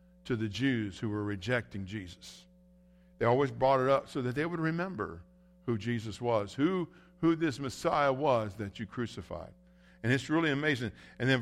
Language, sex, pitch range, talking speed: English, male, 135-200 Hz, 180 wpm